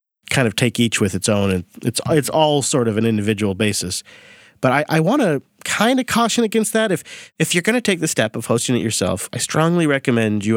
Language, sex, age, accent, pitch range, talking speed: English, male, 30-49, American, 110-135 Hz, 235 wpm